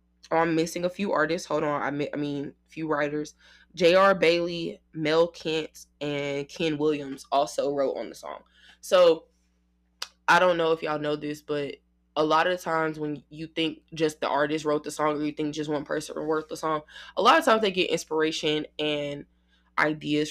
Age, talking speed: 20-39, 190 wpm